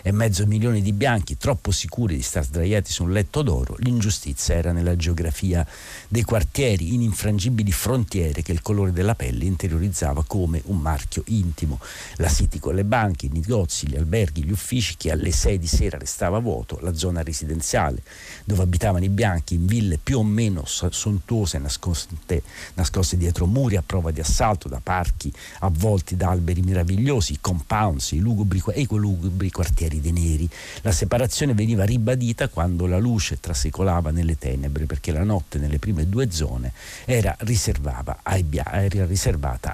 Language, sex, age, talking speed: Italian, male, 50-69, 160 wpm